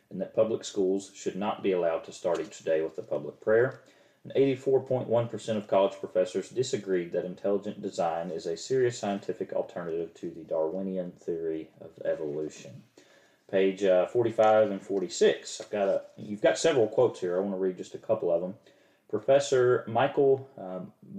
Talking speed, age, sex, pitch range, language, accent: 175 wpm, 40-59, male, 95-135 Hz, English, American